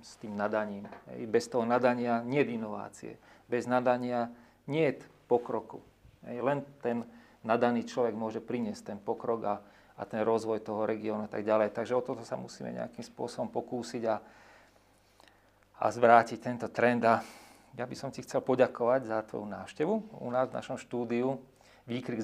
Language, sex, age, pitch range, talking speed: Slovak, male, 40-59, 110-120 Hz, 160 wpm